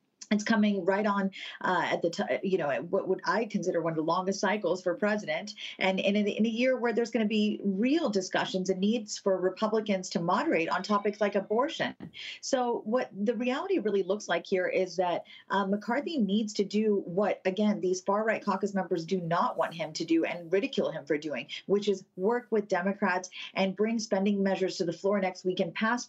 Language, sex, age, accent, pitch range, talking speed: English, female, 40-59, American, 185-225 Hz, 215 wpm